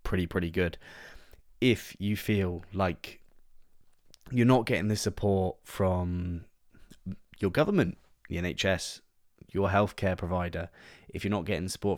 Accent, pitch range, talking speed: British, 90-100 Hz, 125 wpm